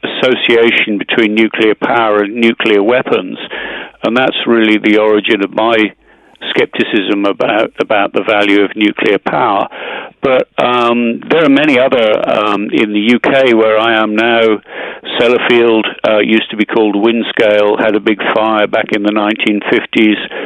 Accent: British